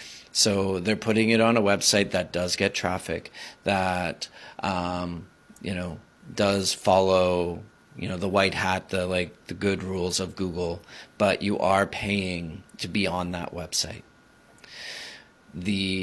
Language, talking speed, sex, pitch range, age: English, 145 wpm, male, 95-110 Hz, 30-49